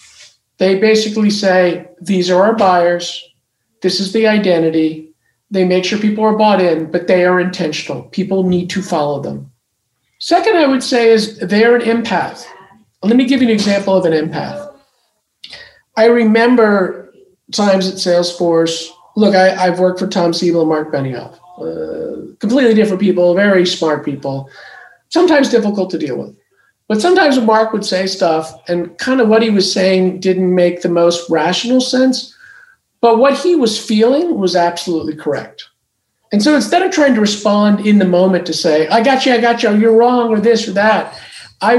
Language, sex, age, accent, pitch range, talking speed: English, male, 50-69, American, 175-235 Hz, 175 wpm